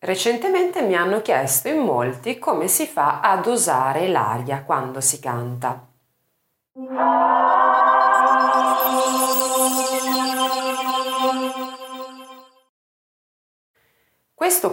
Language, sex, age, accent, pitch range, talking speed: Italian, female, 30-49, native, 140-220 Hz, 65 wpm